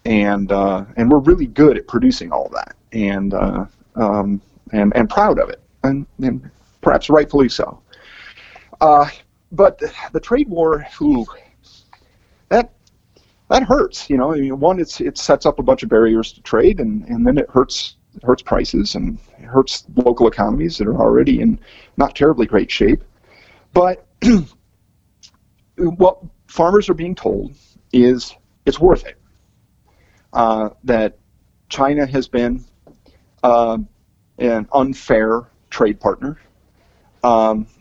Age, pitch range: 40-59, 105-145 Hz